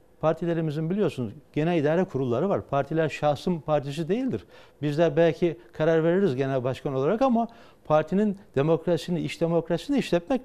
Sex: male